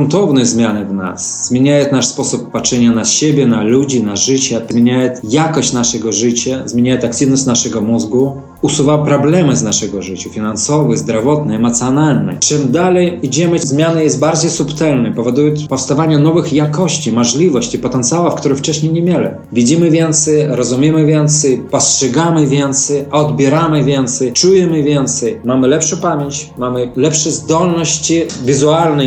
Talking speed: 130 wpm